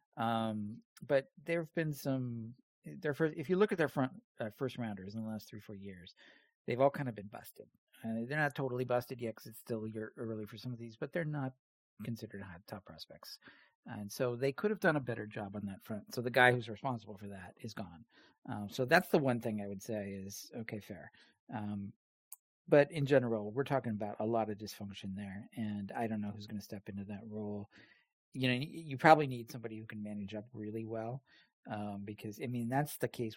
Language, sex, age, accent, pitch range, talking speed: English, male, 50-69, American, 105-130 Hz, 225 wpm